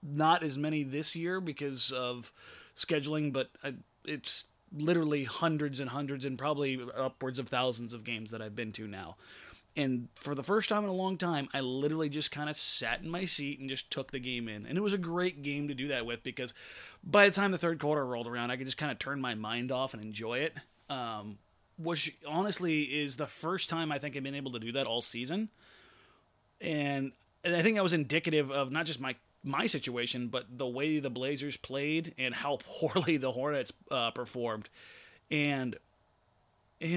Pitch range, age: 125-165 Hz, 30-49